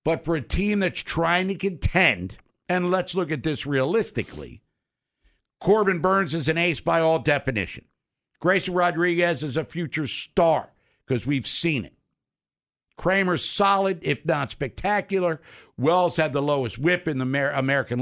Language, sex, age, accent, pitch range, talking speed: English, male, 60-79, American, 115-160 Hz, 150 wpm